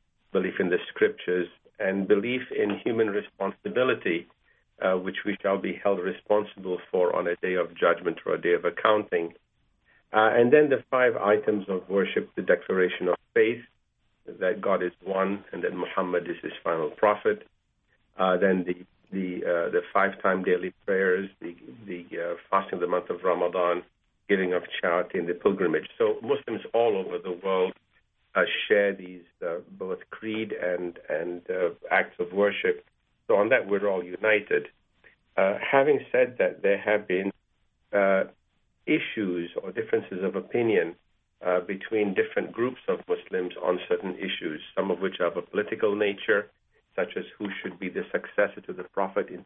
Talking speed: 165 wpm